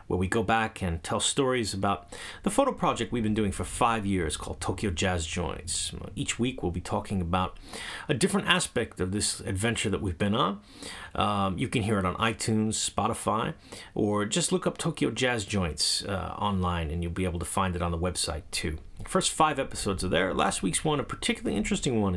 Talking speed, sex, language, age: 210 wpm, male, English, 30-49